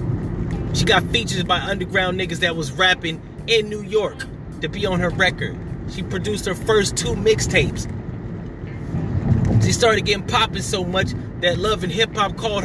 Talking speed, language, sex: 165 wpm, English, male